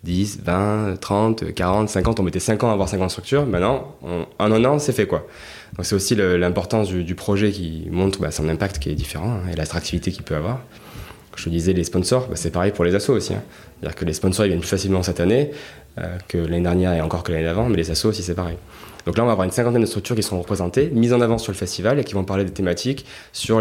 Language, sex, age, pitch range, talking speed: French, male, 20-39, 90-110 Hz, 265 wpm